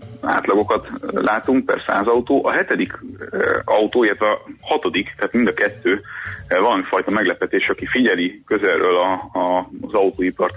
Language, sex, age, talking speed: Hungarian, male, 30-49, 135 wpm